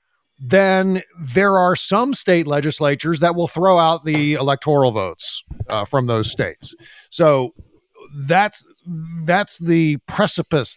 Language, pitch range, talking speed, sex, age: English, 125-160 Hz, 125 wpm, male, 50-69